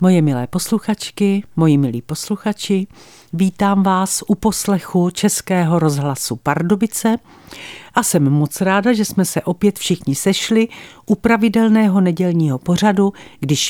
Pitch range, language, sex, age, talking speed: 160-230 Hz, Czech, female, 50-69, 125 wpm